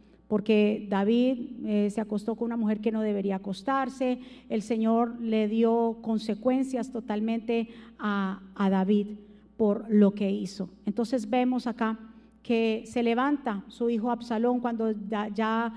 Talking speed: 135 wpm